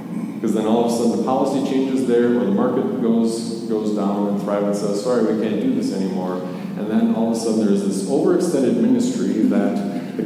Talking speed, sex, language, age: 220 wpm, male, English, 40-59